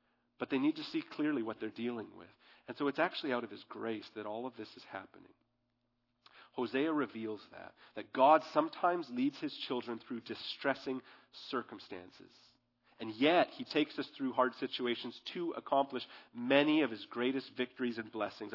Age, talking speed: 40-59, 170 wpm